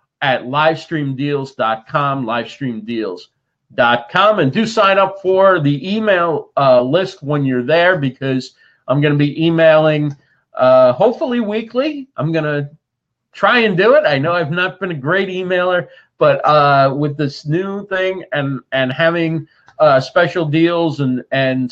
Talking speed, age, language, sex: 145 wpm, 40-59, English, male